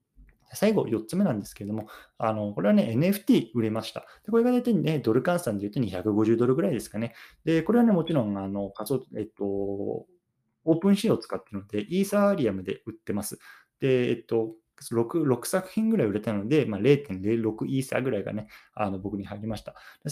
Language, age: Japanese, 20-39